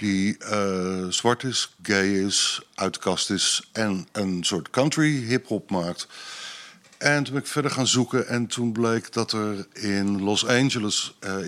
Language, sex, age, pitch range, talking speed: Dutch, male, 50-69, 90-110 Hz, 155 wpm